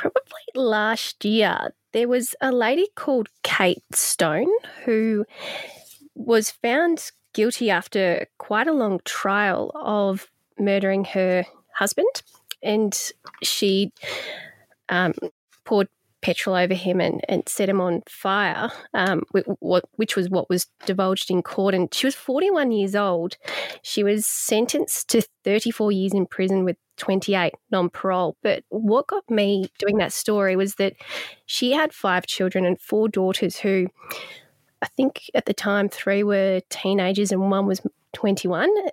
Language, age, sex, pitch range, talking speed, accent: English, 20-39, female, 195-240 Hz, 140 wpm, Australian